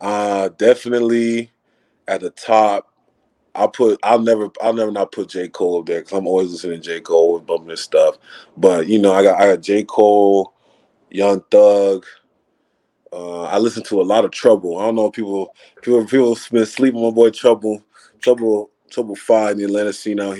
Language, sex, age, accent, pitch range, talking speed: English, male, 20-39, American, 95-115 Hz, 195 wpm